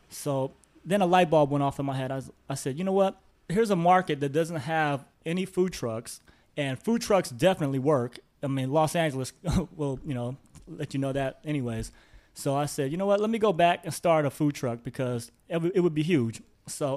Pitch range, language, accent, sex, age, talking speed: 125-155 Hz, English, American, male, 30-49, 235 wpm